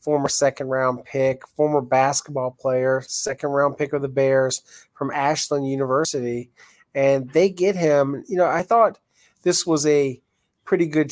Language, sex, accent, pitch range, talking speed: English, male, American, 135-150 Hz, 145 wpm